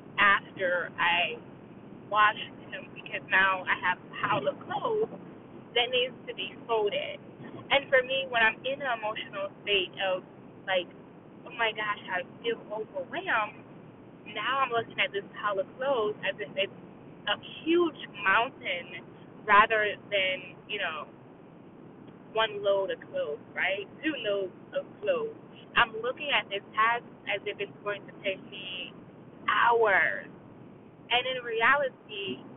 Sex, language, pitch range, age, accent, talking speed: female, English, 195-270 Hz, 20-39, American, 140 wpm